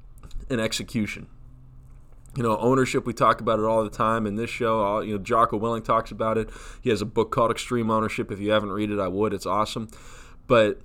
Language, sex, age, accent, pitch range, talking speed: English, male, 20-39, American, 105-125 Hz, 210 wpm